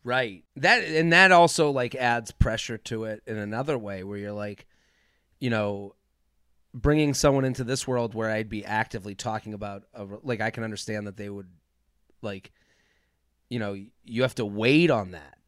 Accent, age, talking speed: American, 30-49, 180 wpm